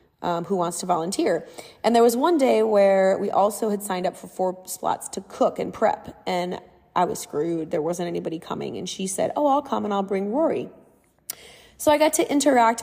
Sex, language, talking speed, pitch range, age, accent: female, English, 215 wpm, 185-230 Hz, 20-39, American